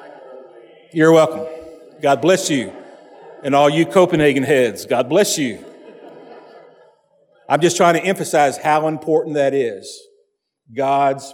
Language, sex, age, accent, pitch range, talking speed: English, male, 50-69, American, 150-195 Hz, 120 wpm